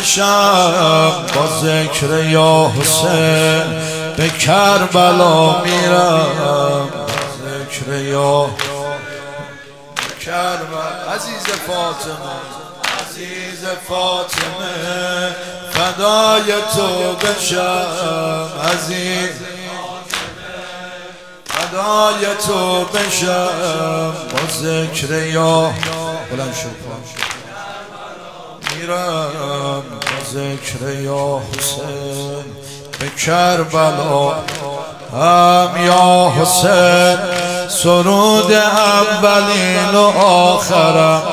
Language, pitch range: Persian, 145-180 Hz